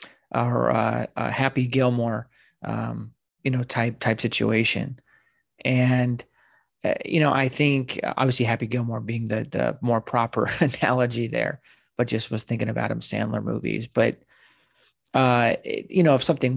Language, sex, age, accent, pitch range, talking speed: English, male, 30-49, American, 115-125 Hz, 150 wpm